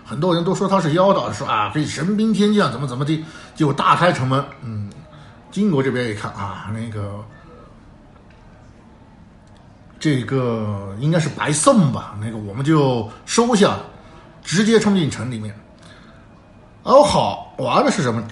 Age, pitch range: 50-69, 115-165 Hz